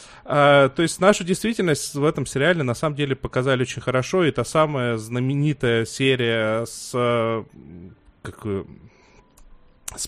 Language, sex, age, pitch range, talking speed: Russian, male, 20-39, 120-150 Hz, 115 wpm